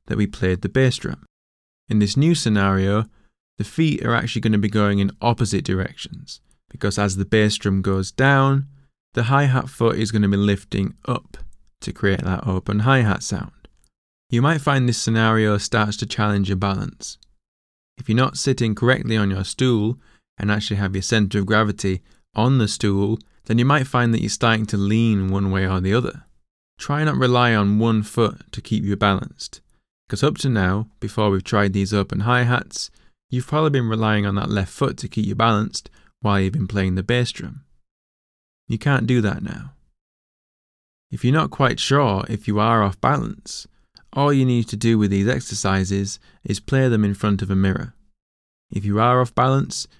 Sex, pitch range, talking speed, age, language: male, 100-120 Hz, 190 wpm, 20-39, English